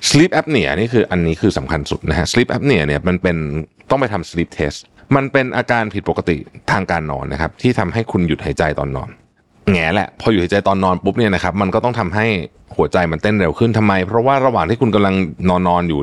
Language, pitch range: Thai, 85-115 Hz